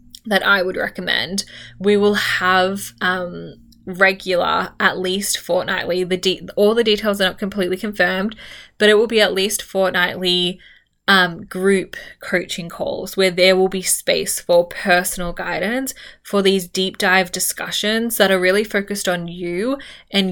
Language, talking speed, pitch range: English, 155 wpm, 180-200 Hz